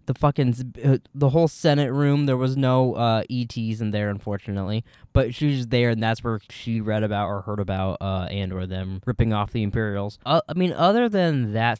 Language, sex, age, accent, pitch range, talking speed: English, male, 10-29, American, 110-135 Hz, 215 wpm